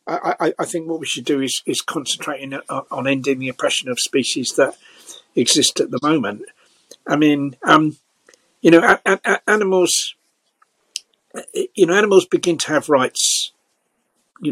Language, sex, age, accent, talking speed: English, male, 60-79, British, 150 wpm